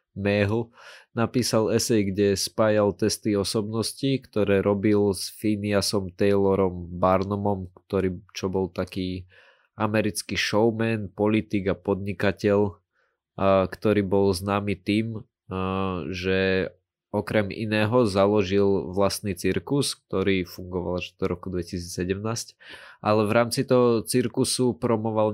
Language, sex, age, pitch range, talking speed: Slovak, male, 20-39, 95-110 Hz, 105 wpm